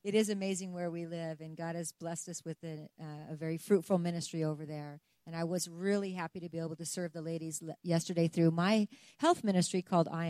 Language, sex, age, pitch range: English, female, 40-59, 170-215 Hz